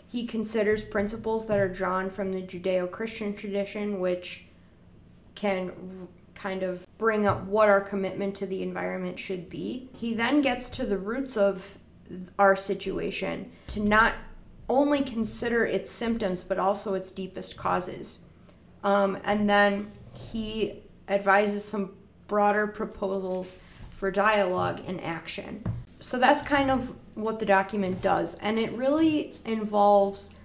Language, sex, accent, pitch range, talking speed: English, female, American, 190-210 Hz, 135 wpm